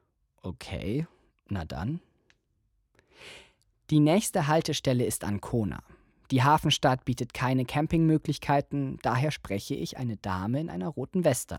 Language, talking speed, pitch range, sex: German, 115 wpm, 110-155 Hz, male